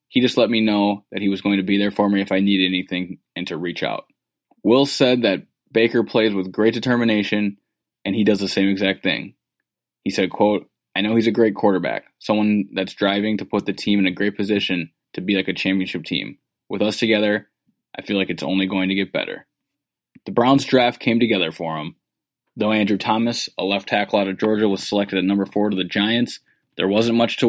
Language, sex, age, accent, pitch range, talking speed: English, male, 20-39, American, 95-115 Hz, 225 wpm